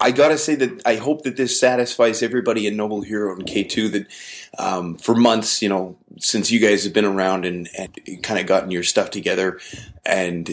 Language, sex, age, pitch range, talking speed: English, male, 30-49, 100-135 Hz, 210 wpm